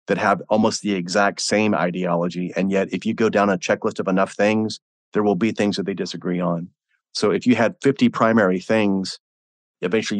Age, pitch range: 30-49, 90-105 Hz